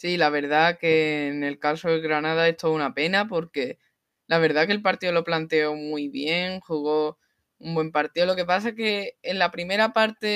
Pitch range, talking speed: 160-185 Hz, 210 wpm